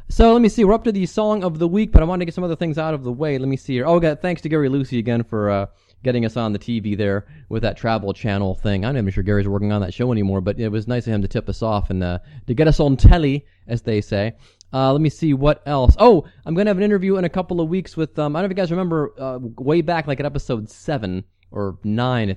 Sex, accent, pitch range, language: male, American, 110-150 Hz, English